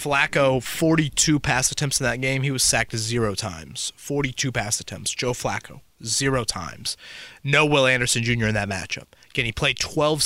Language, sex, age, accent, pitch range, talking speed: English, male, 30-49, American, 115-150 Hz, 175 wpm